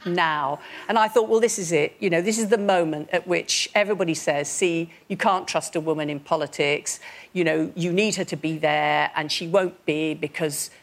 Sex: female